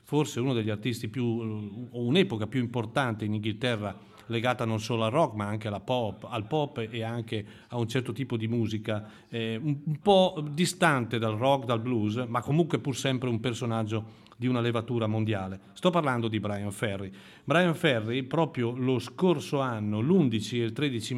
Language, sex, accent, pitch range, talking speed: Italian, male, native, 105-125 Hz, 175 wpm